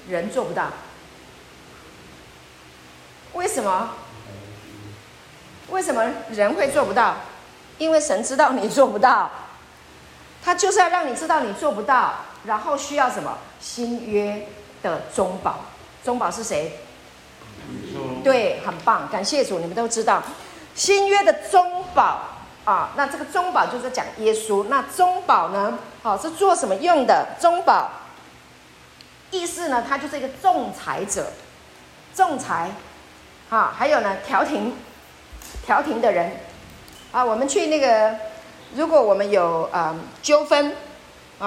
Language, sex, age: Chinese, female, 40-59